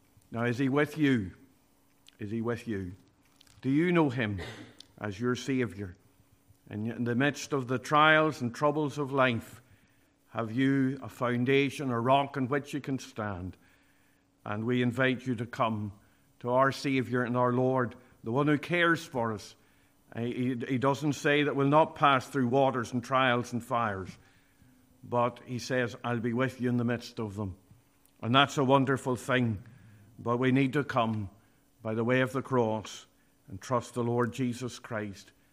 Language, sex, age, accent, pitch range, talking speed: English, male, 50-69, Irish, 115-140 Hz, 170 wpm